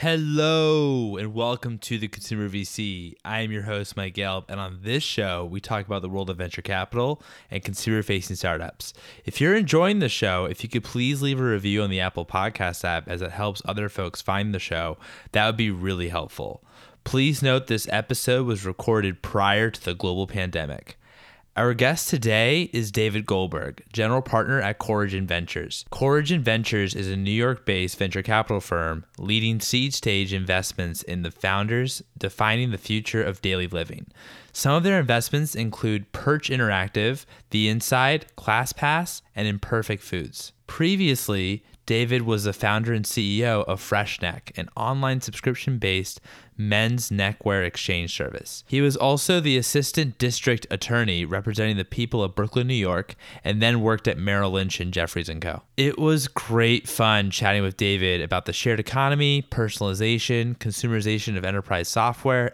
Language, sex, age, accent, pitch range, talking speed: English, male, 20-39, American, 95-125 Hz, 165 wpm